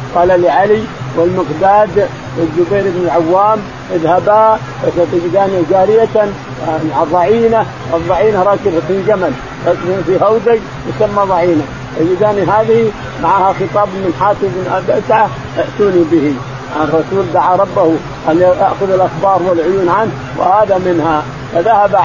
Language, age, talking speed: Arabic, 50-69, 105 wpm